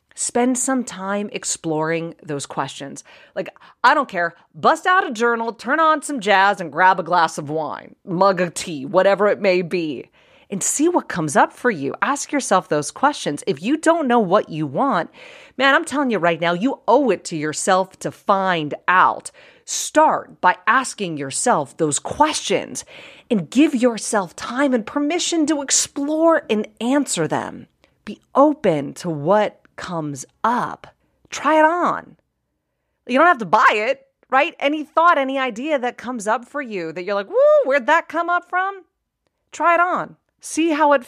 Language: English